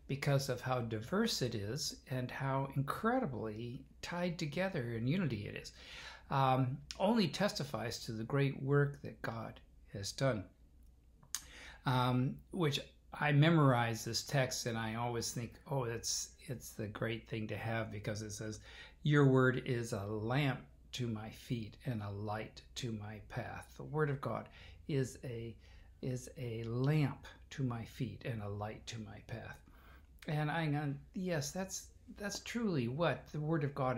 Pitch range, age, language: 110-145 Hz, 60-79, English